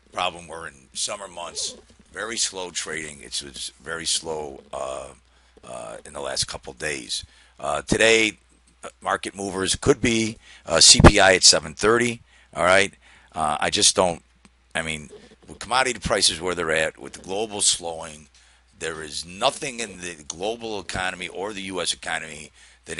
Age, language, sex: 50-69, English, male